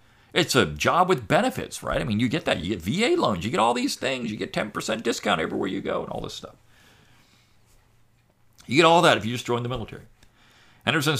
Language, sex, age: English, male, 50-69